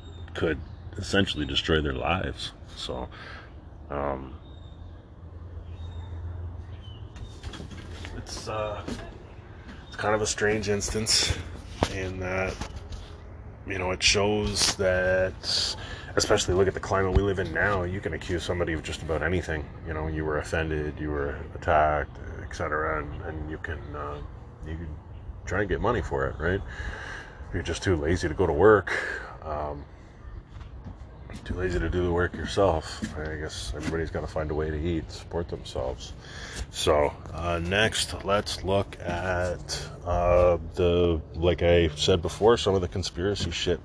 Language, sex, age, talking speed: English, male, 30-49, 145 wpm